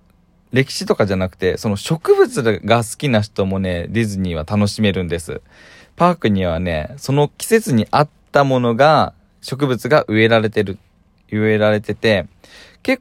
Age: 20-39